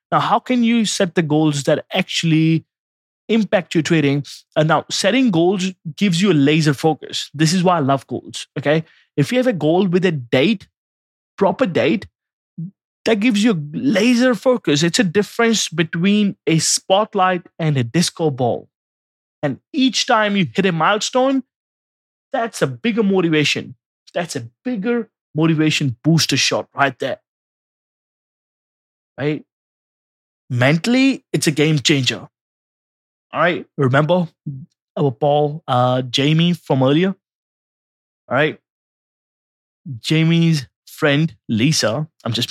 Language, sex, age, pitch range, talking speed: English, male, 20-39, 145-190 Hz, 135 wpm